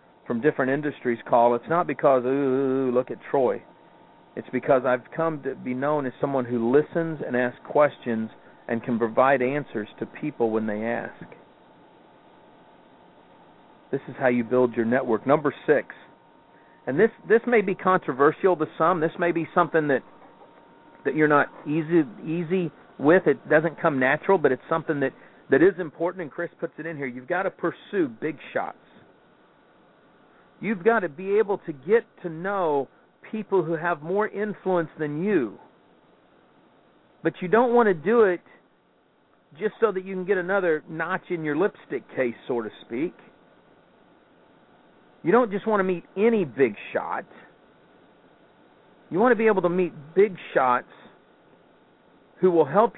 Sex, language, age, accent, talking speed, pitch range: male, English, 40-59, American, 165 wpm, 135-185 Hz